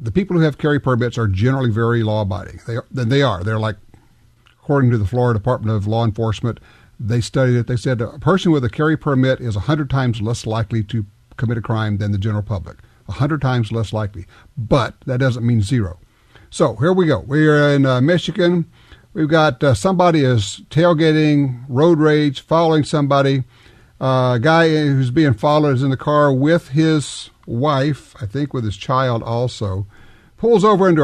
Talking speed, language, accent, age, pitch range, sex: 190 wpm, English, American, 50-69, 115-155 Hz, male